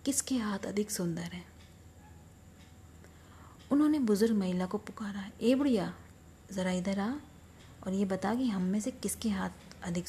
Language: Hindi